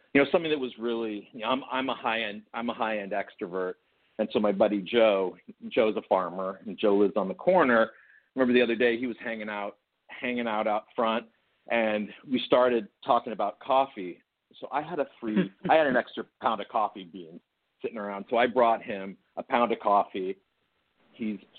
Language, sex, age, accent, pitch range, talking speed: English, male, 40-59, American, 100-125 Hz, 205 wpm